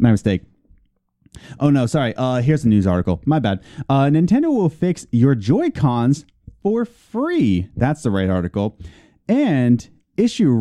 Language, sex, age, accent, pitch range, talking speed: English, male, 30-49, American, 115-170 Hz, 145 wpm